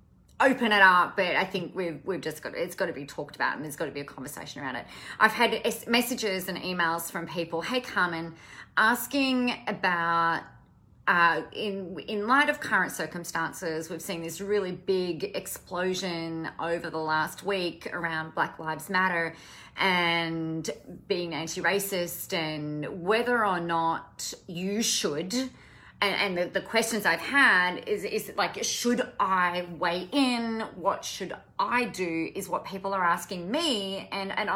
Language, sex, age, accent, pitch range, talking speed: English, female, 30-49, Australian, 170-215 Hz, 160 wpm